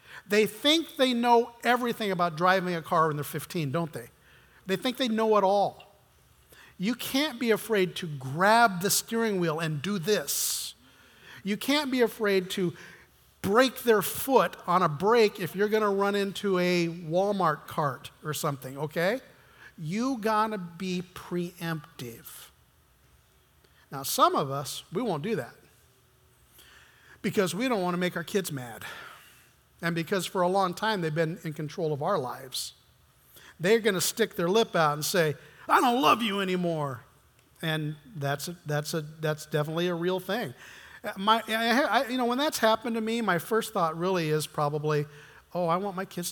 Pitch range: 160-215 Hz